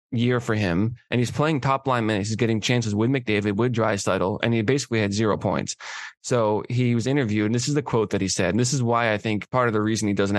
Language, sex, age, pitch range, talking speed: English, male, 20-39, 110-135 Hz, 265 wpm